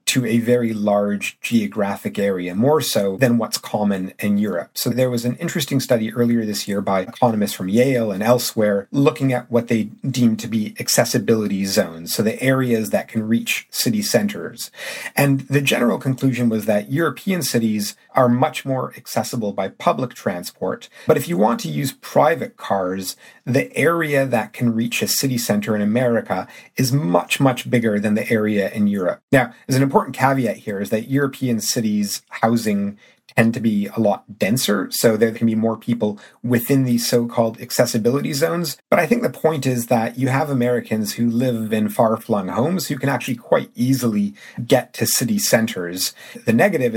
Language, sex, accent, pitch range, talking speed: English, male, American, 105-130 Hz, 180 wpm